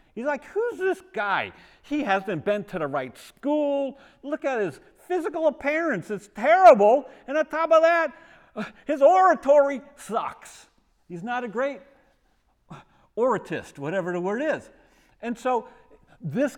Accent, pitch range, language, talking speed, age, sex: American, 165-265 Hz, English, 145 wpm, 50-69, male